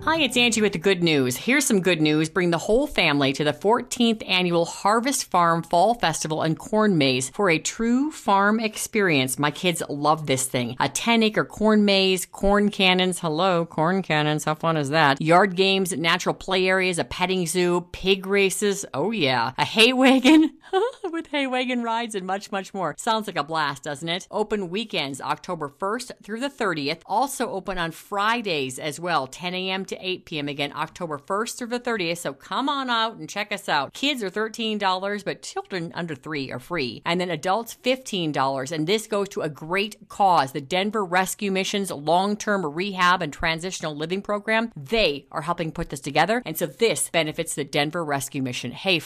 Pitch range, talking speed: 155-210 Hz, 190 wpm